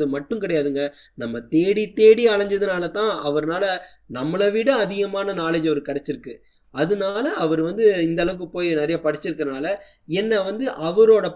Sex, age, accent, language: male, 20-39, native, Tamil